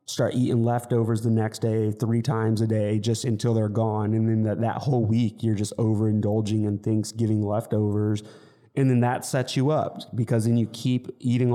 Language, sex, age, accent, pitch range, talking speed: English, male, 30-49, American, 110-125 Hz, 190 wpm